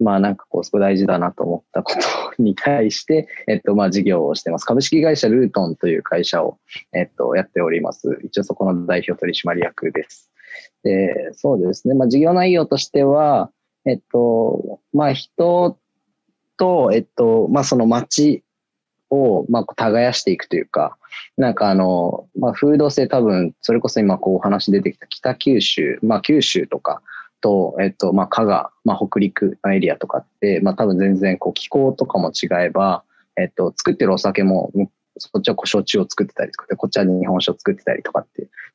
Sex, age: male, 20-39